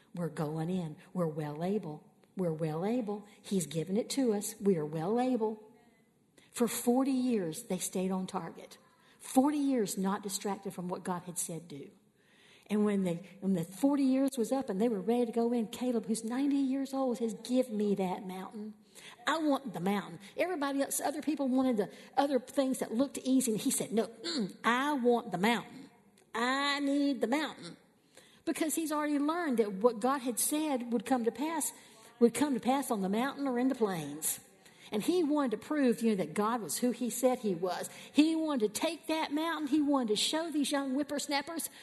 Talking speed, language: 200 wpm, English